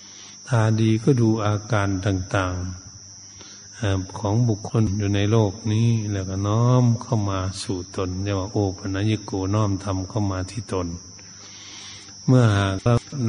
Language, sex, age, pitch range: Thai, male, 60-79, 95-110 Hz